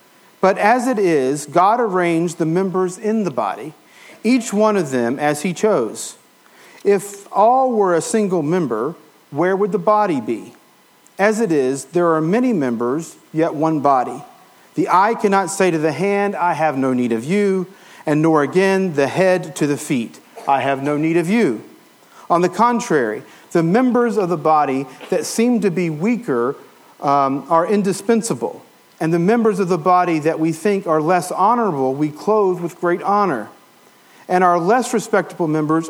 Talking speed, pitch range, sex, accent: 175 wpm, 165-210 Hz, male, American